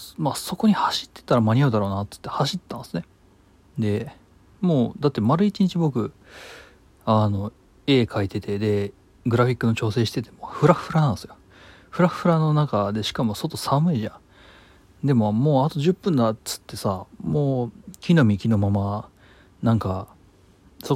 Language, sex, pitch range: Japanese, male, 95-130 Hz